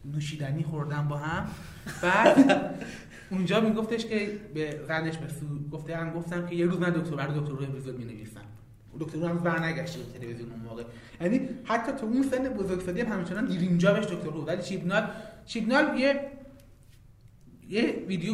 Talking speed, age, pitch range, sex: 155 wpm, 30-49, 145-190 Hz, male